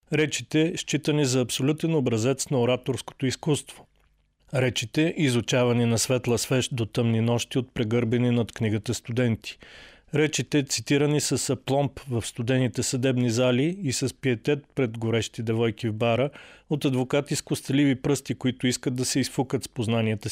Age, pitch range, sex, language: 40-59, 120-150 Hz, male, Bulgarian